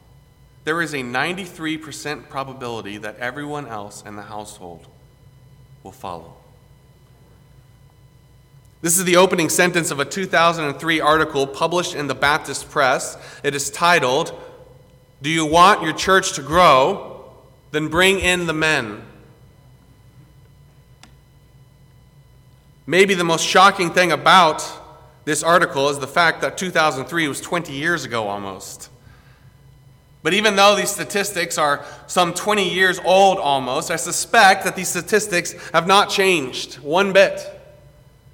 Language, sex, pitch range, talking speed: English, male, 130-175 Hz, 125 wpm